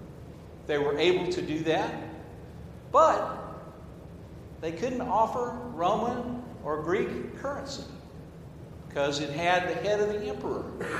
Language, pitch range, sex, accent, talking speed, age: English, 160-245 Hz, male, American, 120 wpm, 60-79